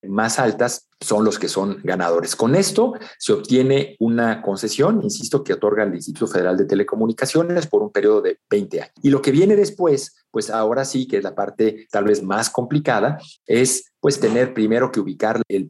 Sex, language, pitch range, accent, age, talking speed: male, Spanish, 110-145 Hz, Mexican, 40-59, 190 wpm